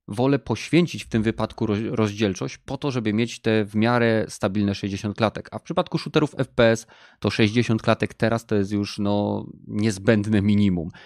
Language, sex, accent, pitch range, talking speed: Polish, male, native, 100-120 Hz, 170 wpm